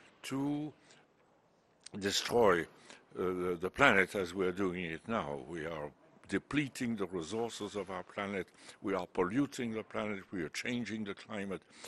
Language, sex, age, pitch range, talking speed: Danish, male, 60-79, 95-120 Hz, 150 wpm